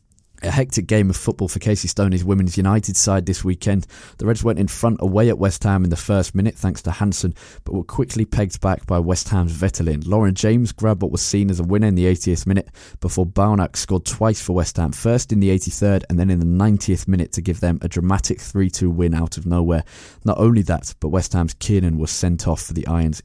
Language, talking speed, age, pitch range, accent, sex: English, 235 wpm, 20-39, 85-105 Hz, British, male